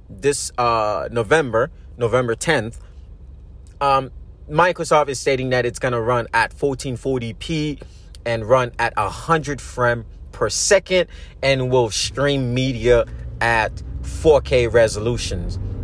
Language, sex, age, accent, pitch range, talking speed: English, male, 30-49, American, 95-150 Hz, 110 wpm